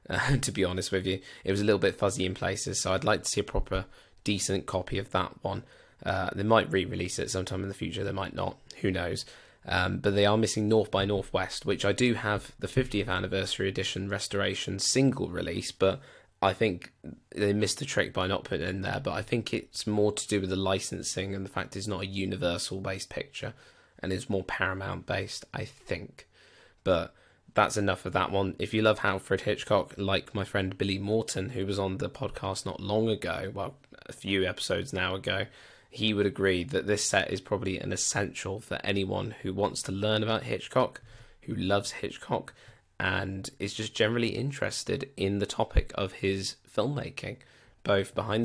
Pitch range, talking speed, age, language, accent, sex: 95-110 Hz, 200 wpm, 20-39, English, British, male